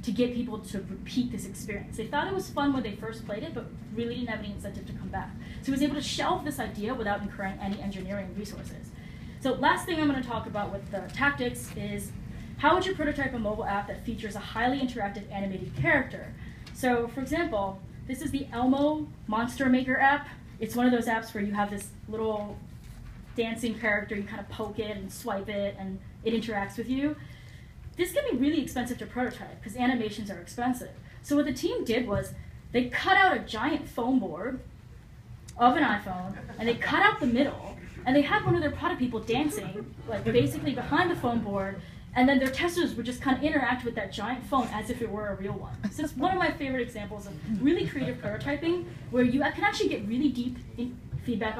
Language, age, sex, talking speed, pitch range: English, 10-29, female, 215 wpm, 210-275 Hz